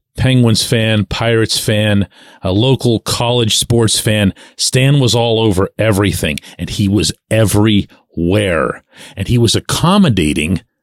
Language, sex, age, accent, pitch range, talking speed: English, male, 40-59, American, 95-125 Hz, 120 wpm